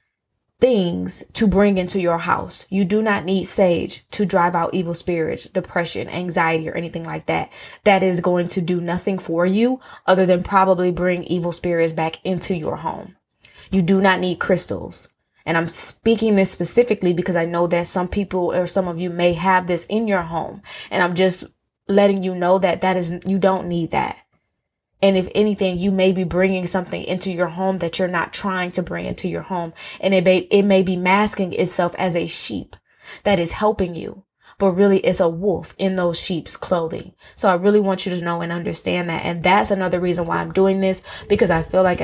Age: 20-39